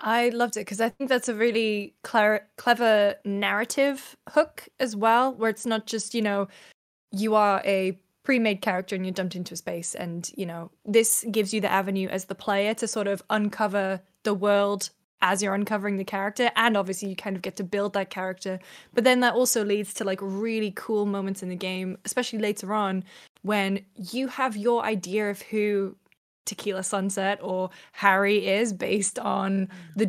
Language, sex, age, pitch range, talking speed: English, female, 10-29, 195-235 Hz, 185 wpm